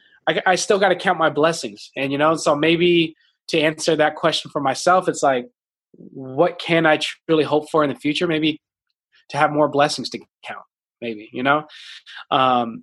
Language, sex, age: English, male, 20-39